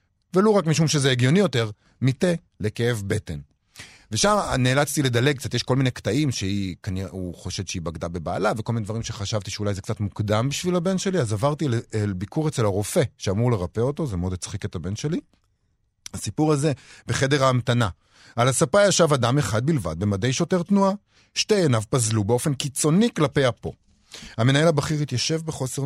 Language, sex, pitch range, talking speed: Hebrew, male, 105-155 Hz, 175 wpm